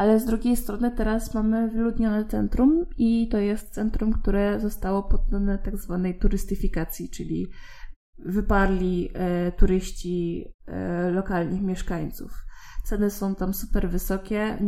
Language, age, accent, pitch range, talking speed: Polish, 20-39, native, 185-220 Hz, 125 wpm